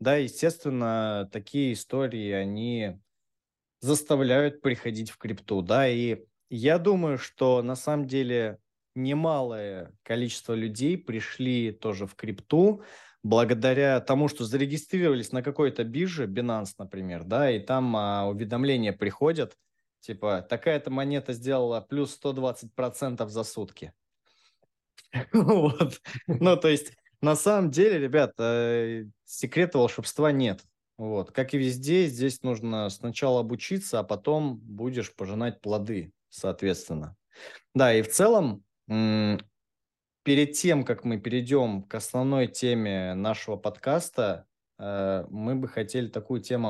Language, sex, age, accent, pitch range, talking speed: Russian, male, 20-39, native, 110-140 Hz, 115 wpm